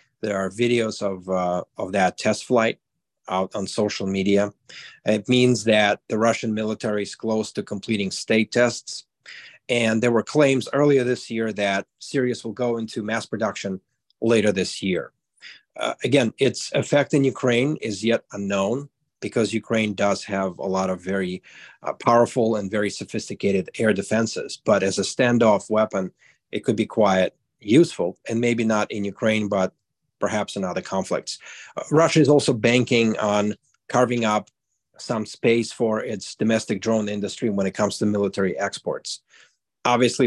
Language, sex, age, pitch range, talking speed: English, male, 40-59, 100-120 Hz, 160 wpm